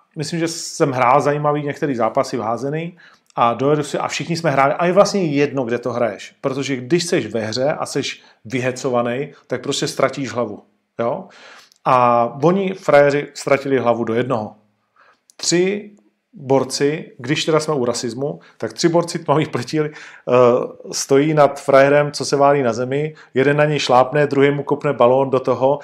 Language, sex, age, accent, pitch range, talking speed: Czech, male, 40-59, native, 130-150 Hz, 170 wpm